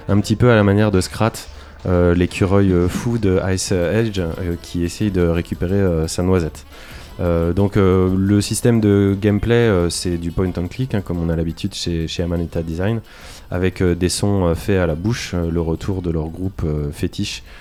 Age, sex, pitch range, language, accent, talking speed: 20-39, male, 90-115 Hz, French, French, 195 wpm